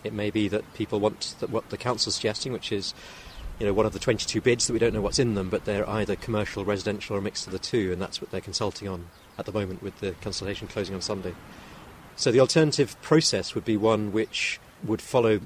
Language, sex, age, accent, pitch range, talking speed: English, male, 40-59, British, 105-120 Hz, 250 wpm